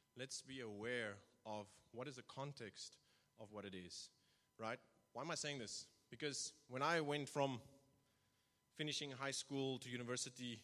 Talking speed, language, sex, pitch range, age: 160 wpm, English, male, 110-140 Hz, 30-49